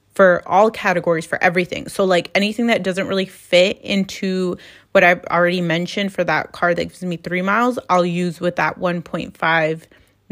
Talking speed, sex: 175 wpm, female